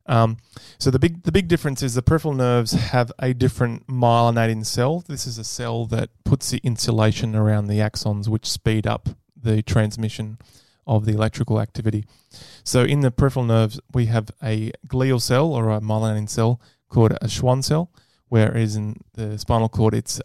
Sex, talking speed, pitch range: male, 180 wpm, 115-135 Hz